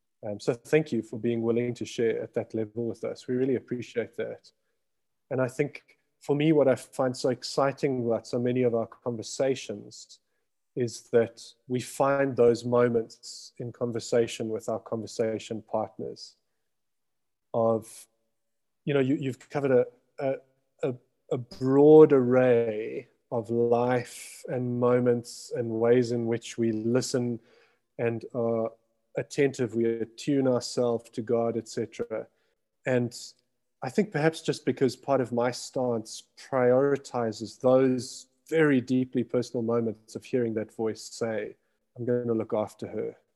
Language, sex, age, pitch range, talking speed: English, male, 30-49, 115-130 Hz, 145 wpm